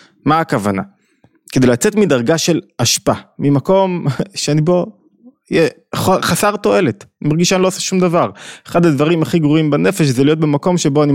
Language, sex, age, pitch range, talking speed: Hebrew, male, 20-39, 125-165 Hz, 155 wpm